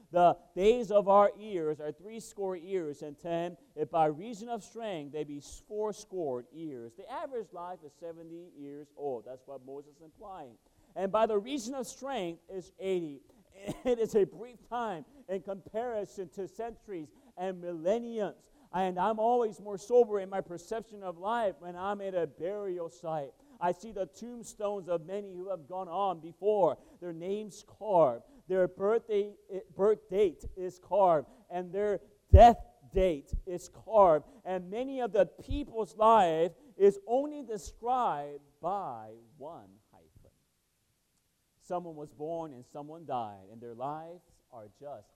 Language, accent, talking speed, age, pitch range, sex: English, American, 155 wpm, 40-59, 160-215 Hz, male